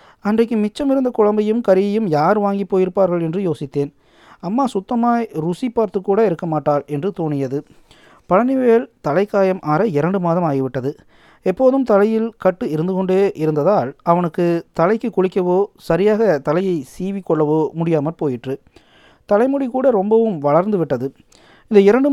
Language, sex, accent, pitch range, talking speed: Tamil, male, native, 150-210 Hz, 120 wpm